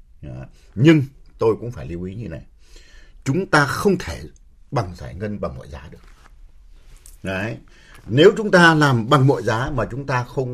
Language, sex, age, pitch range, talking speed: Vietnamese, male, 60-79, 75-125 Hz, 175 wpm